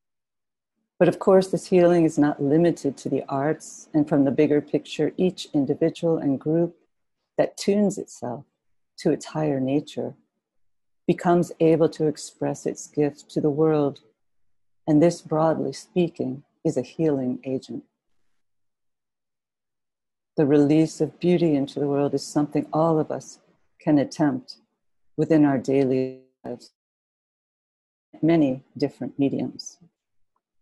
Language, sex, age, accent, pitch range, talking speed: English, female, 50-69, American, 140-165 Hz, 125 wpm